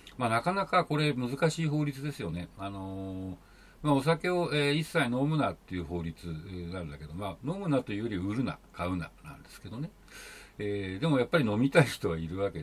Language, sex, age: Japanese, male, 60-79